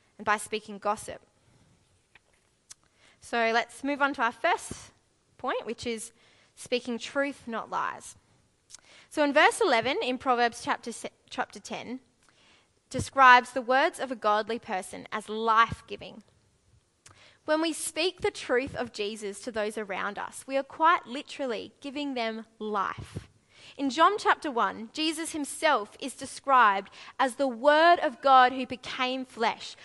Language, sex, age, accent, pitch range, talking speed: English, female, 20-39, Australian, 225-295 Hz, 145 wpm